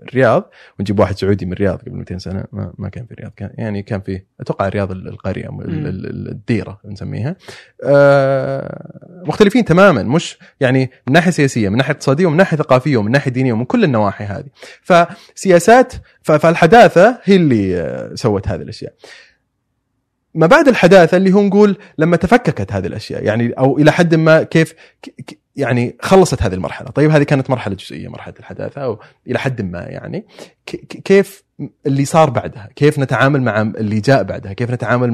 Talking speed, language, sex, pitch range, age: 155 wpm, Arabic, male, 105-160 Hz, 30-49